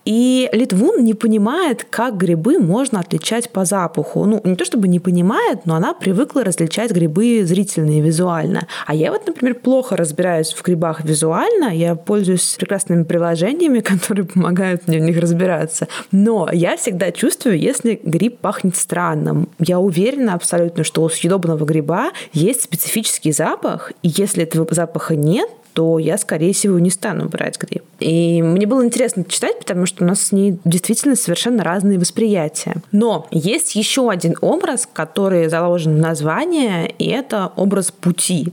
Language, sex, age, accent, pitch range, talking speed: Russian, female, 20-39, native, 170-225 Hz, 155 wpm